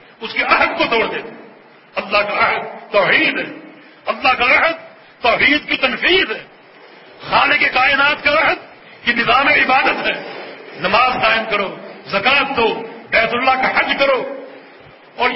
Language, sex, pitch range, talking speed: English, male, 230-310 Hz, 145 wpm